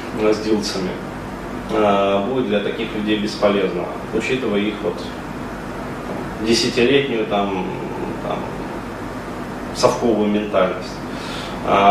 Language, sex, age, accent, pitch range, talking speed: Russian, male, 20-39, native, 100-115 Hz, 75 wpm